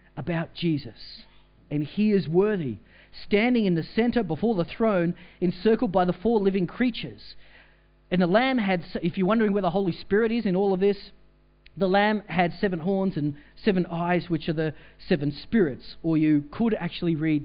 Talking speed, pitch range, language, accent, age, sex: 175 wpm, 165-210 Hz, English, Australian, 40-59, male